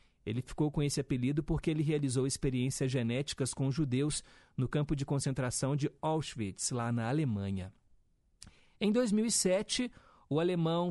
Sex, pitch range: male, 135-185 Hz